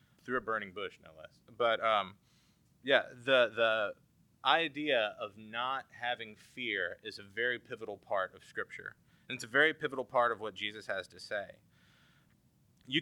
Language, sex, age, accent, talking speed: English, male, 30-49, American, 165 wpm